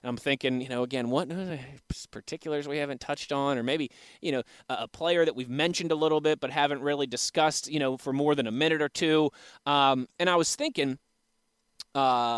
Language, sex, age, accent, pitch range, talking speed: English, male, 20-39, American, 130-165 Hz, 205 wpm